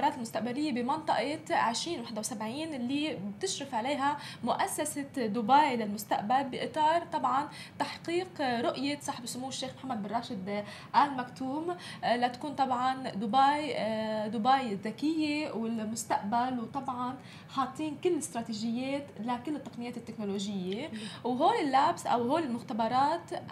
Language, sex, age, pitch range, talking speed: Arabic, female, 20-39, 225-290 Hz, 105 wpm